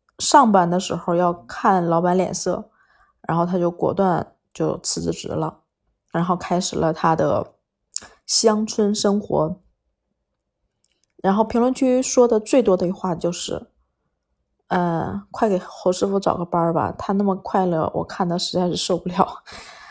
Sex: female